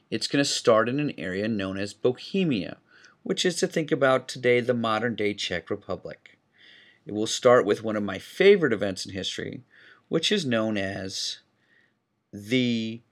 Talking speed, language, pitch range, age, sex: 165 wpm, English, 110-140 Hz, 40-59, male